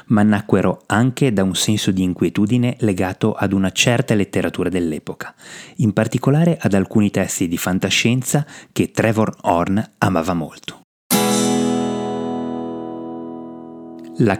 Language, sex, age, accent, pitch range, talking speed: Italian, male, 30-49, native, 85-110 Hz, 115 wpm